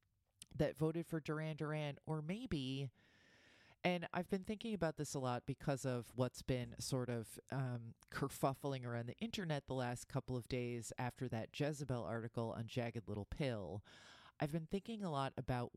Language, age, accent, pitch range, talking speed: English, 30-49, American, 115-140 Hz, 170 wpm